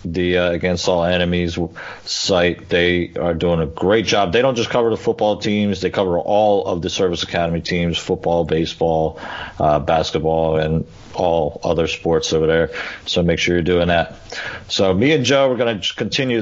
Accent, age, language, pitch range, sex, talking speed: American, 40-59, English, 85-105 Hz, male, 185 wpm